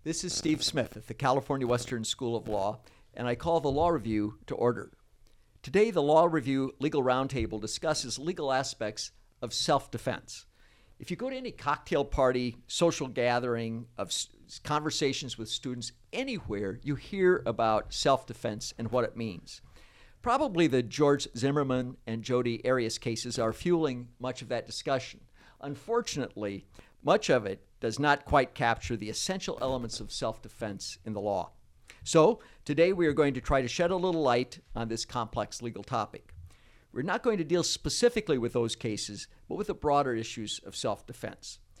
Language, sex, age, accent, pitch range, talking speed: English, male, 50-69, American, 115-145 Hz, 165 wpm